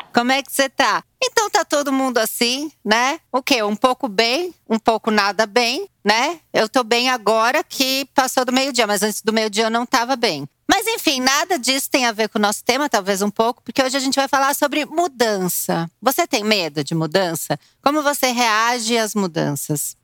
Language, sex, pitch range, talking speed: Portuguese, female, 205-270 Hz, 205 wpm